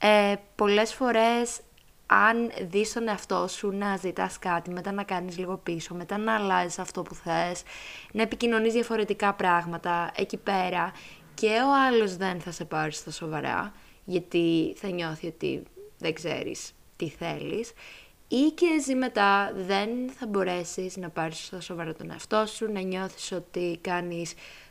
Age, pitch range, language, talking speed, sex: 20-39, 175-210 Hz, Greek, 155 wpm, female